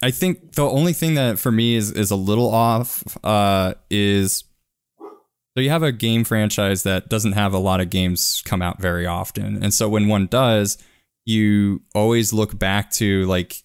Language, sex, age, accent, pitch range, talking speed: English, male, 20-39, American, 95-110 Hz, 190 wpm